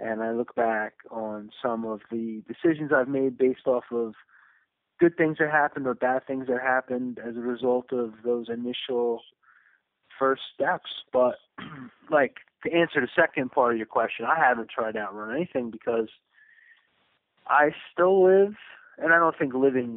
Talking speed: 170 wpm